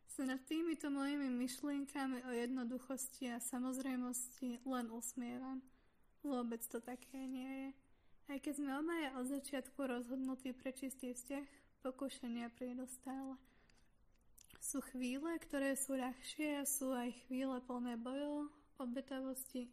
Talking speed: 120 wpm